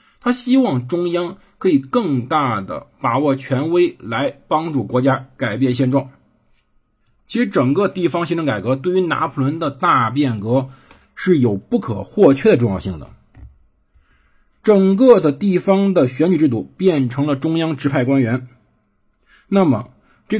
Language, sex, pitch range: Chinese, male, 125-180 Hz